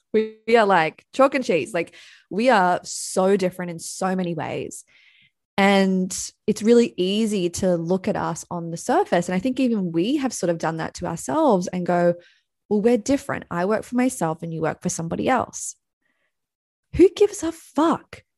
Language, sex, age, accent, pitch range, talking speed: English, female, 20-39, Australian, 180-235 Hz, 185 wpm